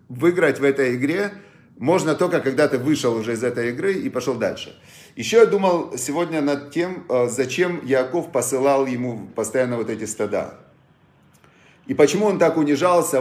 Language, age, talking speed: Russian, 40-59, 160 wpm